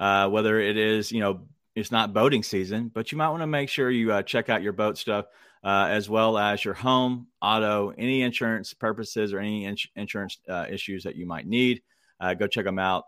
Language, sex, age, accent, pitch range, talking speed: English, male, 30-49, American, 100-125 Hz, 225 wpm